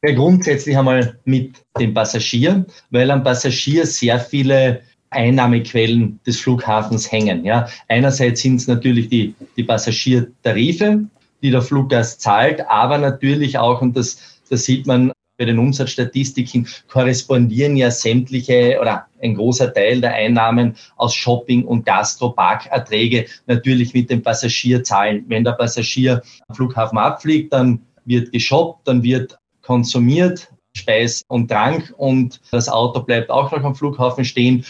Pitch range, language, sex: 120-135 Hz, German, male